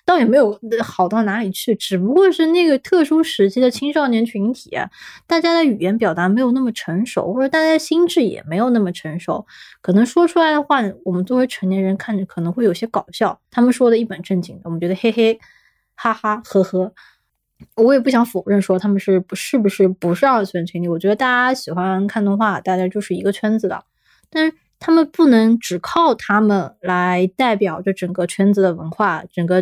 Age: 20-39